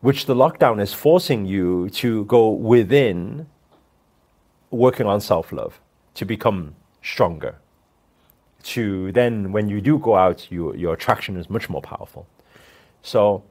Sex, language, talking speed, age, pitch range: male, English, 130 wpm, 40-59, 90-125 Hz